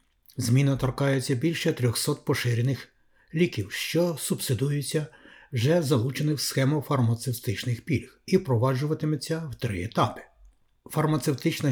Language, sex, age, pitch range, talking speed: Ukrainian, male, 60-79, 120-150 Hz, 100 wpm